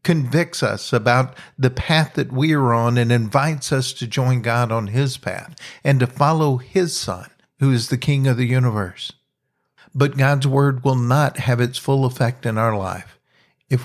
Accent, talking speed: American, 185 wpm